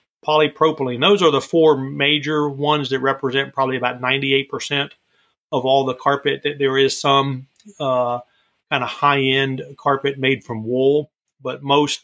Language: English